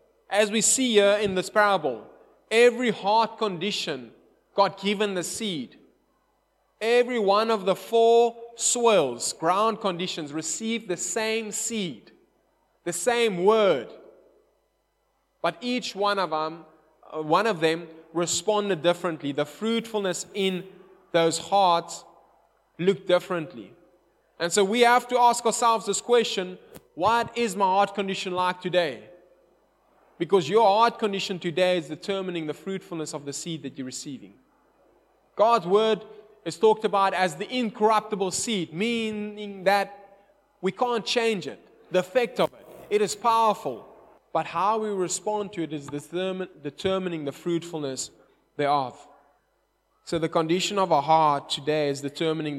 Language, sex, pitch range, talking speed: English, male, 165-220 Hz, 135 wpm